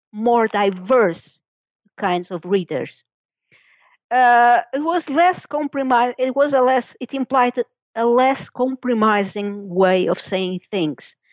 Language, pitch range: English, 190-250 Hz